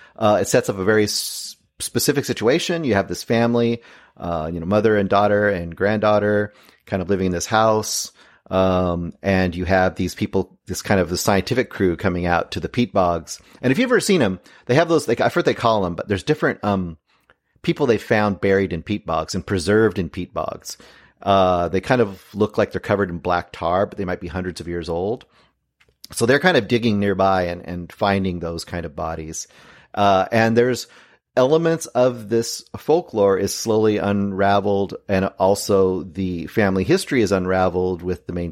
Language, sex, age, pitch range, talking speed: English, male, 30-49, 90-115 Hz, 200 wpm